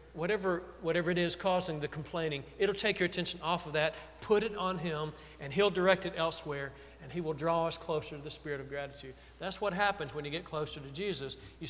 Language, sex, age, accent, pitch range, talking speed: English, male, 40-59, American, 145-185 Hz, 225 wpm